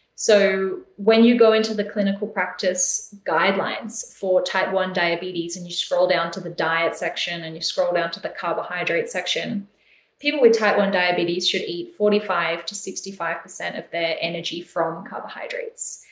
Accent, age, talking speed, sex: Australian, 20-39, 165 wpm, female